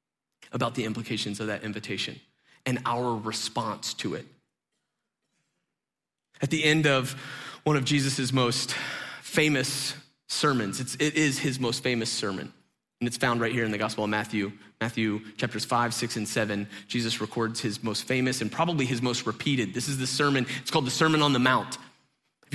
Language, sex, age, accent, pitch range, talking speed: English, male, 30-49, American, 130-155 Hz, 175 wpm